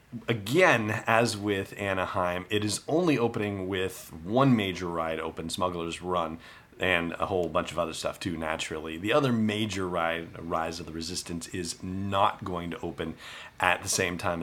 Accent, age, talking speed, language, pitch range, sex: American, 30-49, 170 wpm, English, 85-110 Hz, male